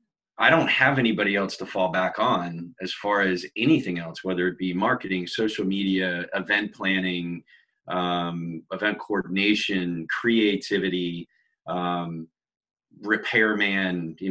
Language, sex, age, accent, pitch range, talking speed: English, male, 30-49, American, 90-110 Hz, 115 wpm